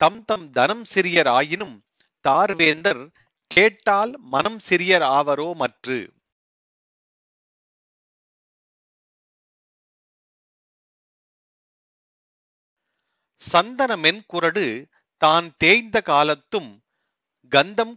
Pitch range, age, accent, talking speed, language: 155-210 Hz, 40-59, native, 55 wpm, Tamil